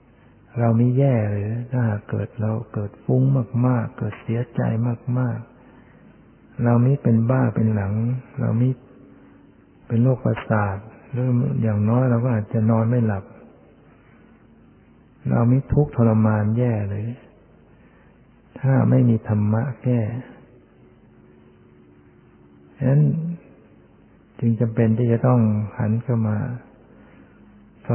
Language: Thai